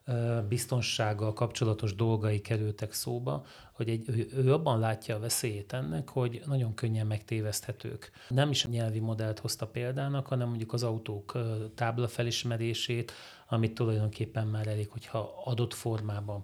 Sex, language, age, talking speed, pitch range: male, Hungarian, 30-49, 135 wpm, 110-120 Hz